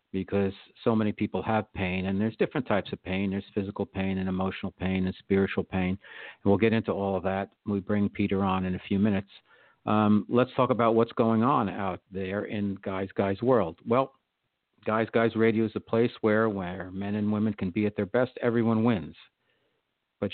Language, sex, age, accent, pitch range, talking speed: English, male, 50-69, American, 95-110 Hz, 205 wpm